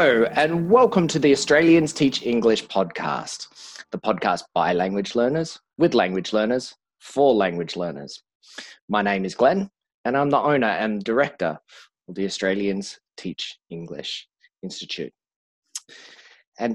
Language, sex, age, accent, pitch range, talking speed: English, male, 20-39, Australian, 100-145 Hz, 135 wpm